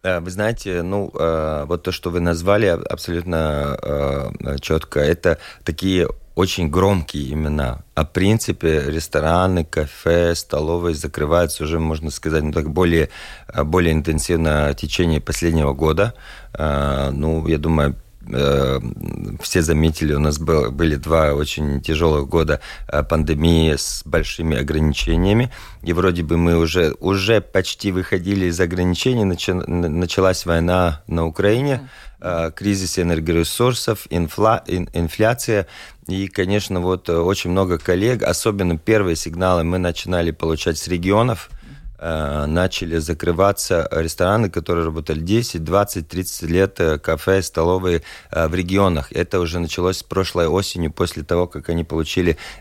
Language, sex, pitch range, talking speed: Russian, male, 75-90 Hz, 115 wpm